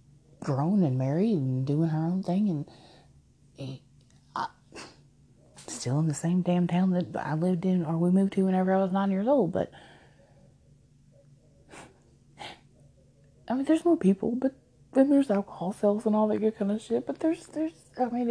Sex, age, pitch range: female, 20-39, 150-210 Hz